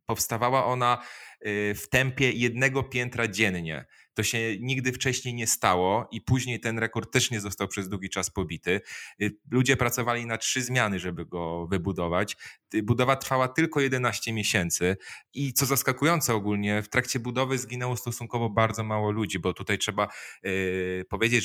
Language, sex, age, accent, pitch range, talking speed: Polish, male, 30-49, native, 105-125 Hz, 150 wpm